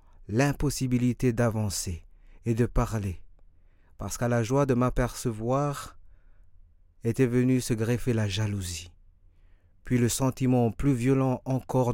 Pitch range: 85-125 Hz